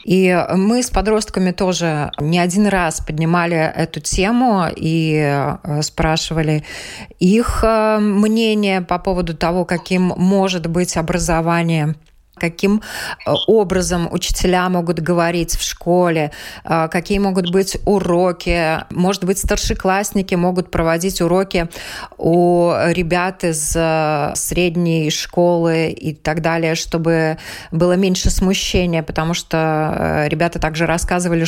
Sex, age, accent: female, 20-39, native